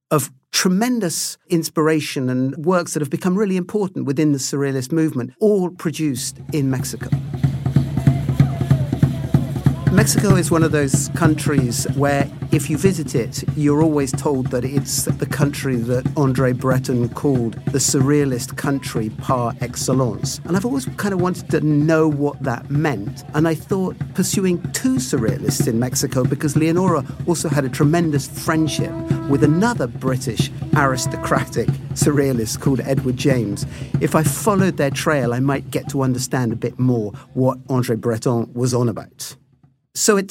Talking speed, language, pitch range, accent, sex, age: 150 wpm, English, 130-155 Hz, British, male, 50-69